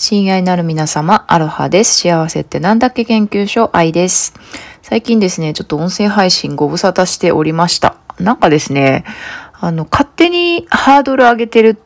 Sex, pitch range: female, 145-195 Hz